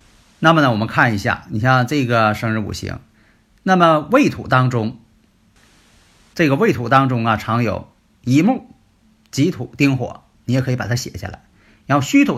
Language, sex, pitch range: Chinese, male, 110-145 Hz